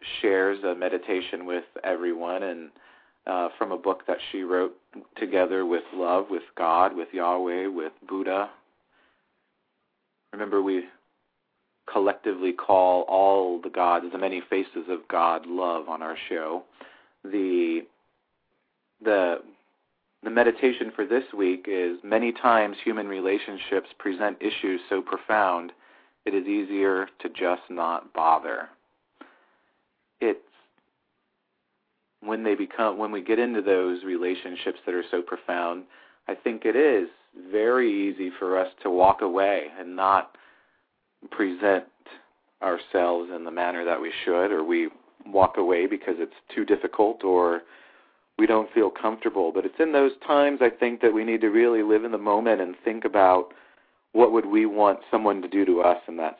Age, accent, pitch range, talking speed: 40-59, American, 90-115 Hz, 150 wpm